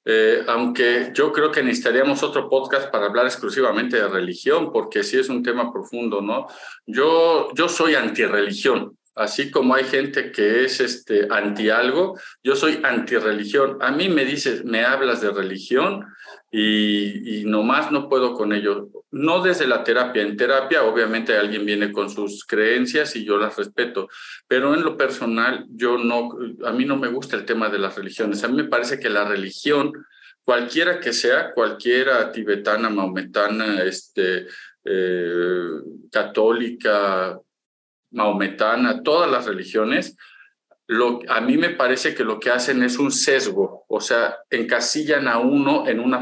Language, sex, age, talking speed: Spanish, male, 50-69, 155 wpm